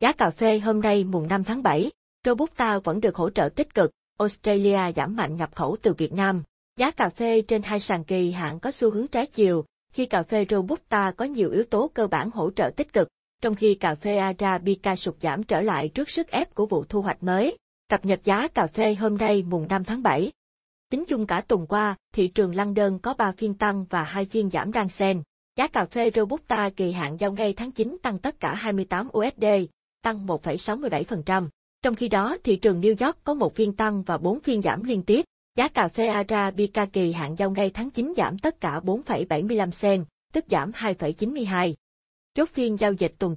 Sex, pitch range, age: female, 185-225 Hz, 20-39